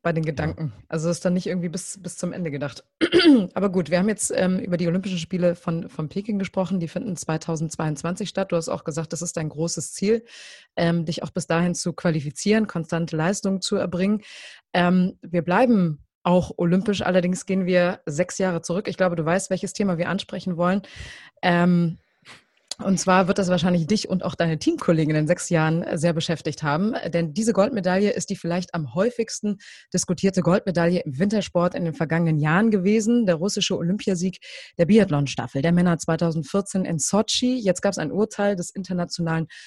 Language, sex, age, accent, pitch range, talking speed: German, female, 20-39, German, 170-200 Hz, 190 wpm